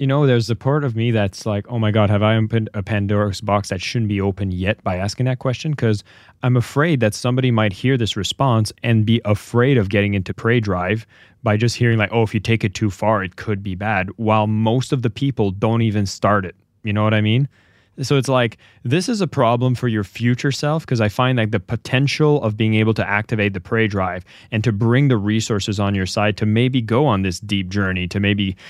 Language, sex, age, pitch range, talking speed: English, male, 20-39, 100-120 Hz, 240 wpm